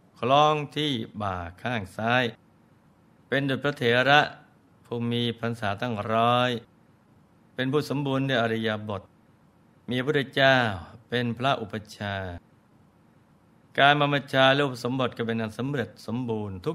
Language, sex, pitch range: Thai, male, 110-135 Hz